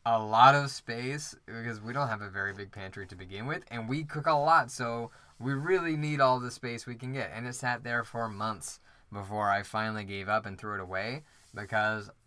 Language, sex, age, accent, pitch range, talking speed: English, male, 10-29, American, 100-120 Hz, 225 wpm